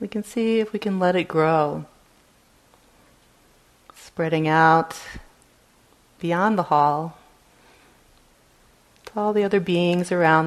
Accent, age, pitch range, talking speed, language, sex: American, 40-59, 155-175 Hz, 115 wpm, English, female